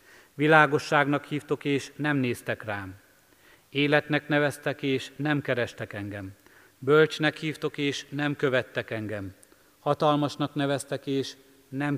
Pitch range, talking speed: 105-135 Hz, 110 wpm